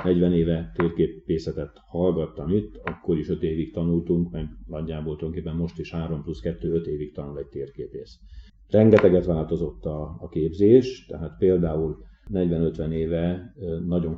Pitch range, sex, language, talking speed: 80-90 Hz, male, Hungarian, 140 wpm